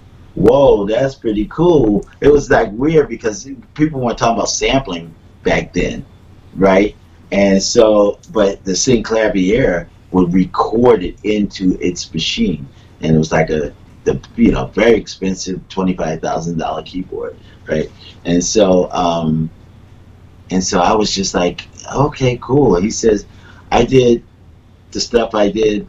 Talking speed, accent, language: 145 wpm, American, English